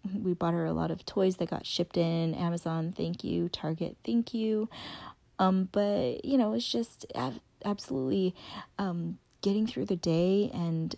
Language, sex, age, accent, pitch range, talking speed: English, female, 30-49, American, 165-205 Hz, 170 wpm